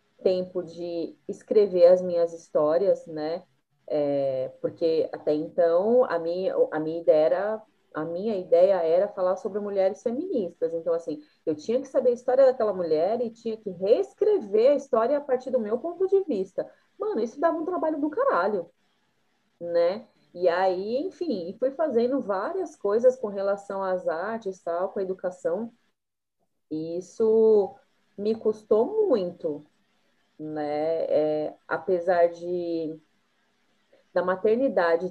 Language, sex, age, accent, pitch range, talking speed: Portuguese, female, 30-49, Brazilian, 175-250 Hz, 140 wpm